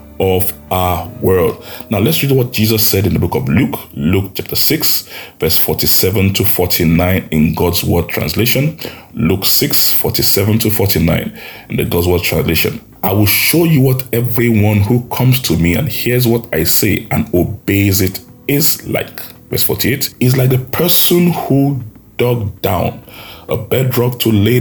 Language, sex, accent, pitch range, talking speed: English, male, Nigerian, 95-125 Hz, 165 wpm